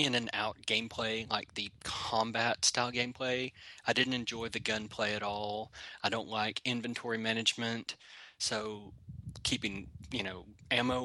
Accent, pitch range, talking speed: American, 105-125 Hz, 140 wpm